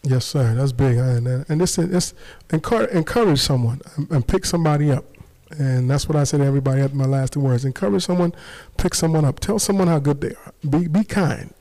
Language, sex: English, male